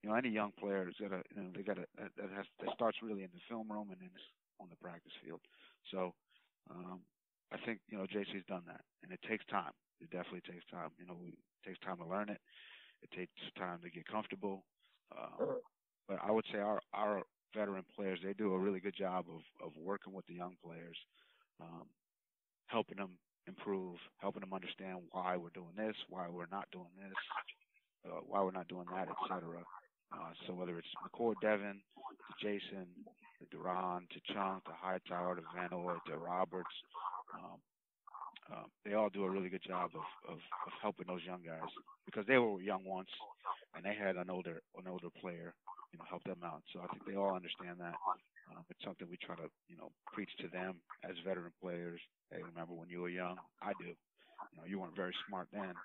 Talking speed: 210 wpm